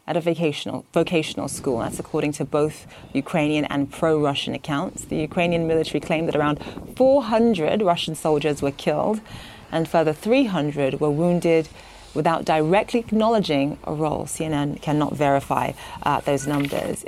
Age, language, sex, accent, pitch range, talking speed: 30-49, English, female, British, 145-170 Hz, 140 wpm